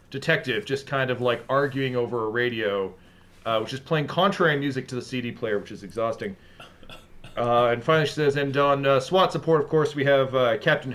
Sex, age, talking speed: male, 40-59, 210 wpm